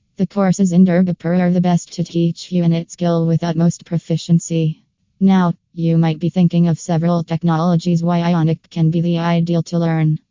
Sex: female